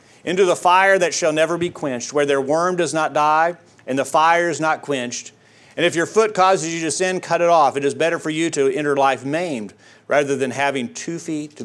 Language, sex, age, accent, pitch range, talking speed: English, male, 40-59, American, 120-155 Hz, 235 wpm